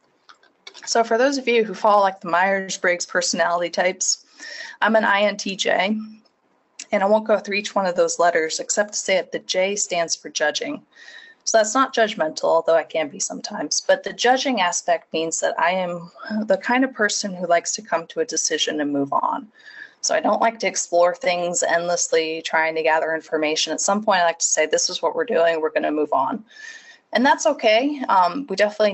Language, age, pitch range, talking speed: English, 20-39, 170-240 Hz, 205 wpm